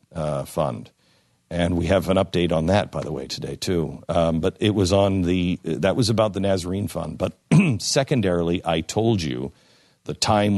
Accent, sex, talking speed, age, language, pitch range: American, male, 185 wpm, 50-69, English, 80-105 Hz